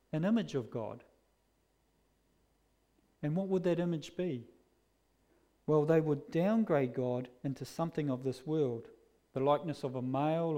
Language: English